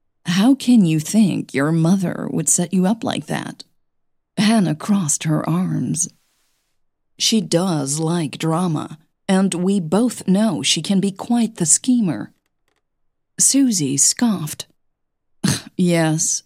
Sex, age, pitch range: female, 40-59, 155-200 Hz